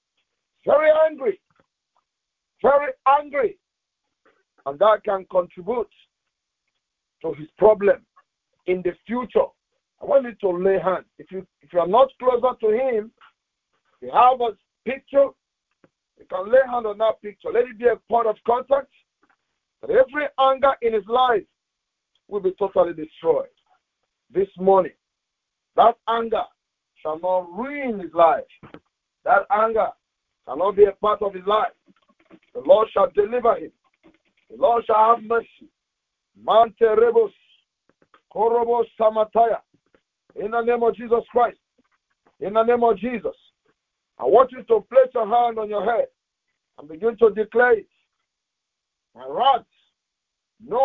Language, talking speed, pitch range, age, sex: English, 140 wpm, 210-280 Hz, 50-69, male